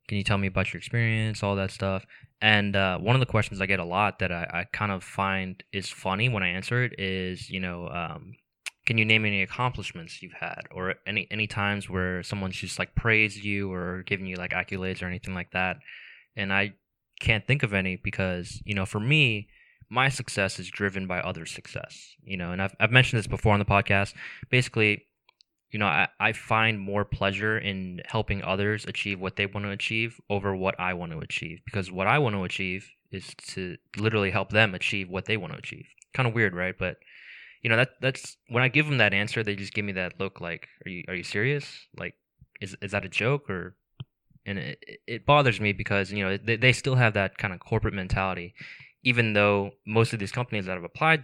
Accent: American